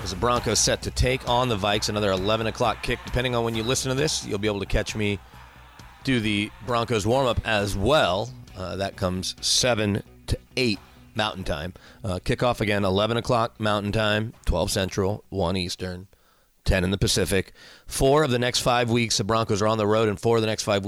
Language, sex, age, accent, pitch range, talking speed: English, male, 30-49, American, 95-115 Hz, 210 wpm